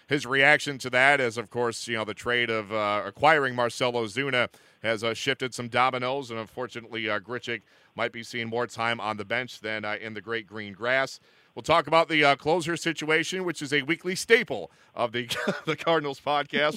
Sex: male